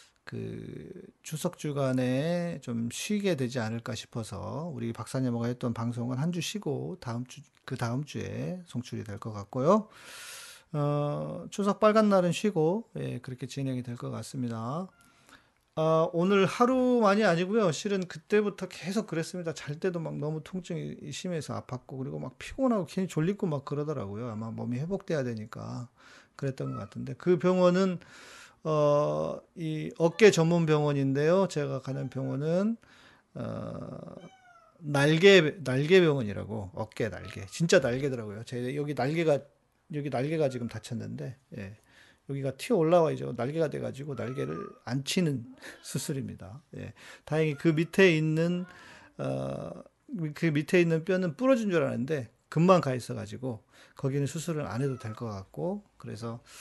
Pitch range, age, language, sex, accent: 125-175 Hz, 40-59, Korean, male, native